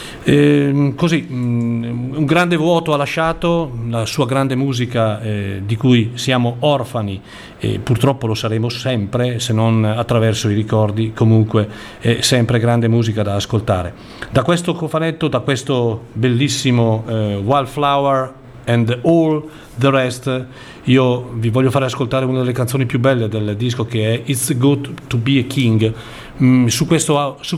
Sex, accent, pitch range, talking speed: male, native, 115-135 Hz, 145 wpm